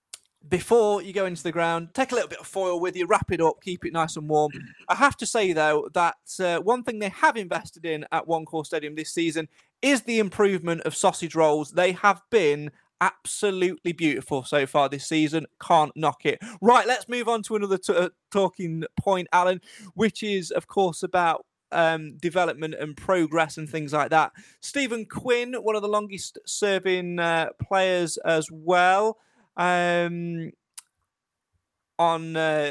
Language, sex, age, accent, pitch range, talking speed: English, male, 20-39, British, 165-205 Hz, 175 wpm